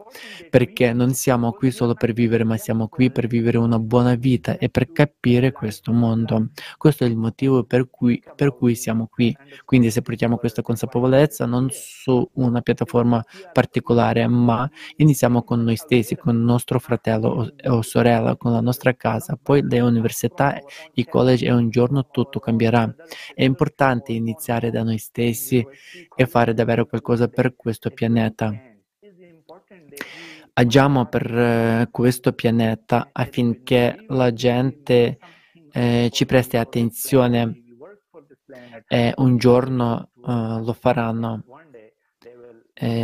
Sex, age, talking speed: male, 20-39, 130 wpm